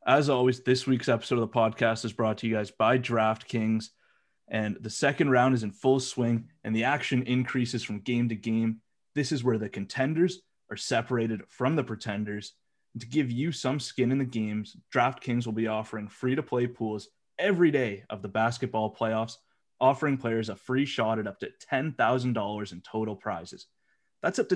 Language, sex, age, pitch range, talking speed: English, male, 20-39, 110-135 Hz, 185 wpm